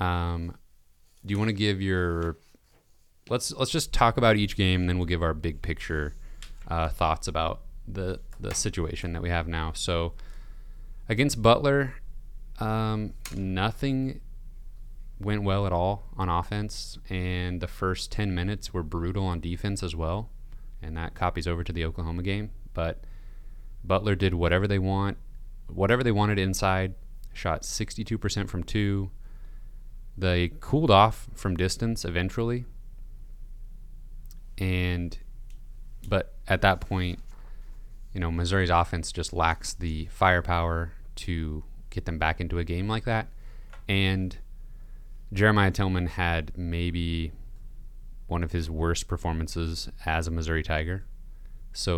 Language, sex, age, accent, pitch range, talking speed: English, male, 30-49, American, 85-105 Hz, 135 wpm